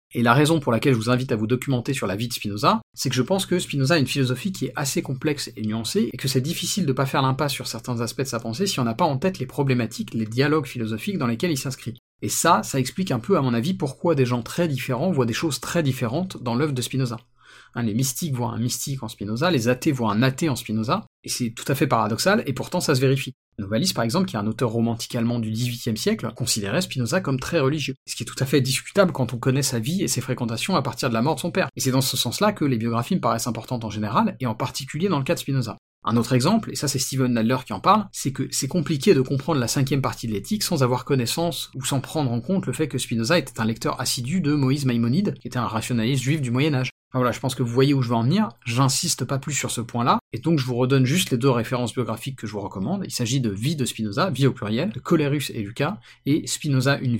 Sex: male